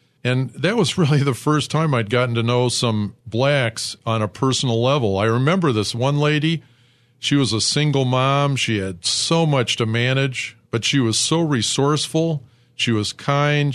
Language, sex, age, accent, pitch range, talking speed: English, male, 50-69, American, 115-145 Hz, 180 wpm